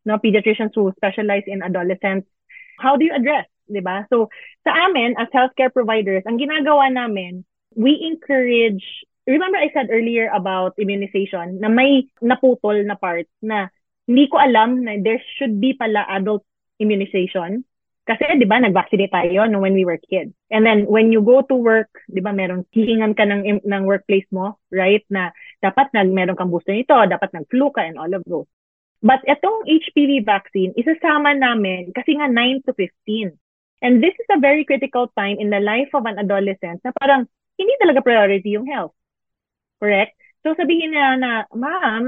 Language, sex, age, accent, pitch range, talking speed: Filipino, female, 20-39, native, 200-265 Hz, 175 wpm